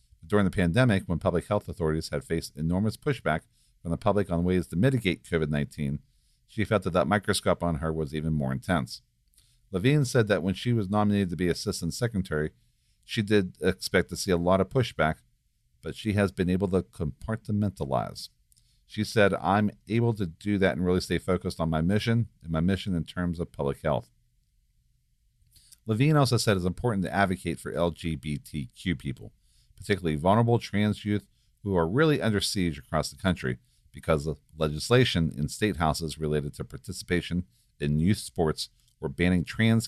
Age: 50-69